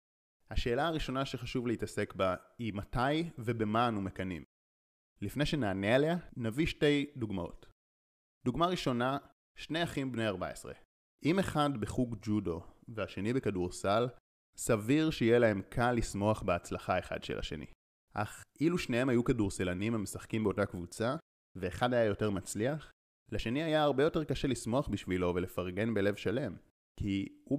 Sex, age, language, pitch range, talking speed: male, 30-49, Hebrew, 95-130 Hz, 135 wpm